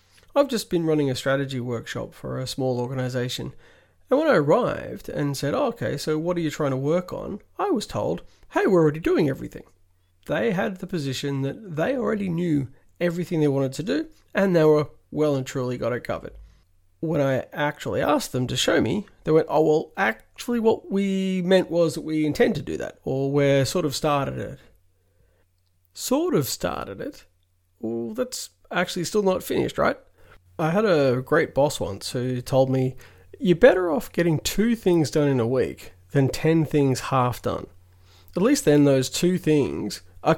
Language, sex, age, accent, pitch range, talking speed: English, male, 30-49, Australian, 120-175 Hz, 190 wpm